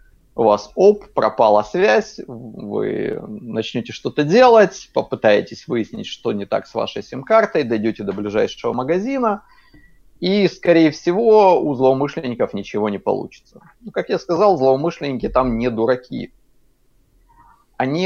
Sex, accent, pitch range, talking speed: male, native, 110-165 Hz, 125 wpm